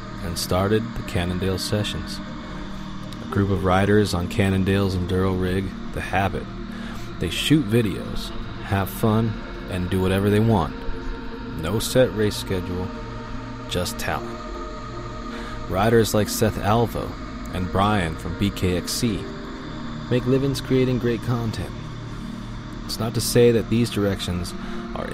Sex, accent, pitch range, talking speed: male, American, 95-120 Hz, 125 wpm